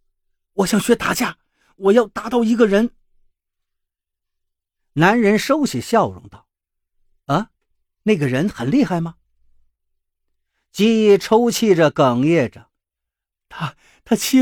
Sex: male